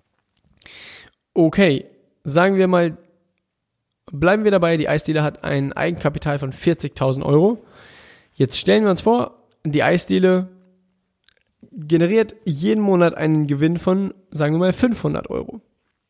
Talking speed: 125 wpm